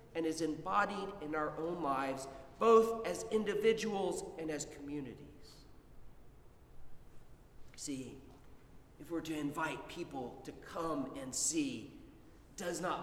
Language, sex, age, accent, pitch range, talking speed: English, male, 40-59, American, 160-220 Hz, 115 wpm